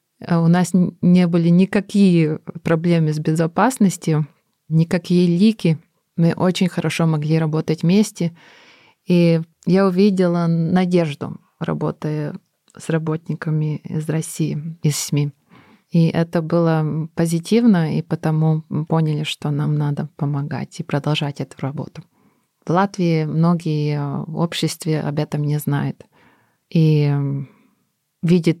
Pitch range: 150-175 Hz